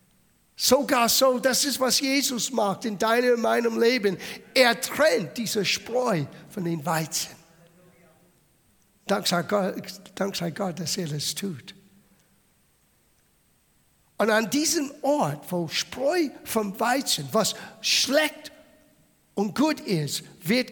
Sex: male